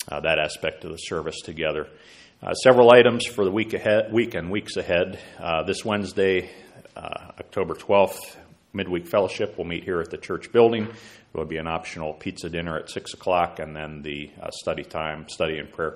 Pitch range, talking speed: 80-95 Hz, 195 wpm